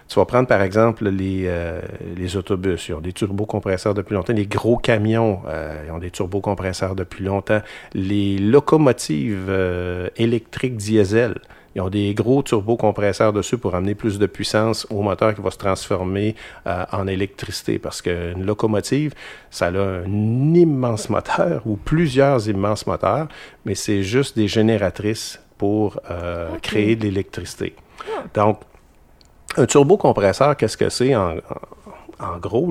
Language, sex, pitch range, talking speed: French, male, 100-125 Hz, 150 wpm